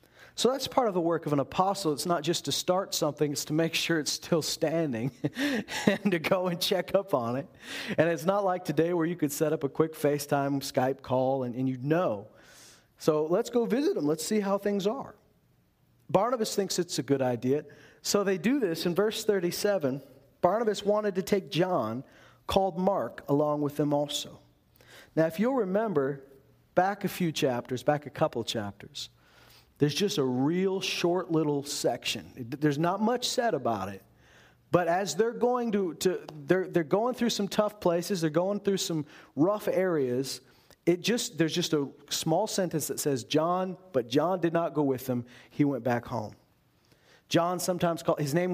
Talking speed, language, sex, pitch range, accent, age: 190 wpm, English, male, 140-190 Hz, American, 40-59